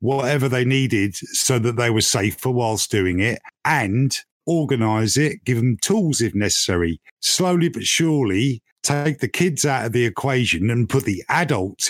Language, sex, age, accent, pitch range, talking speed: English, male, 50-69, British, 110-145 Hz, 170 wpm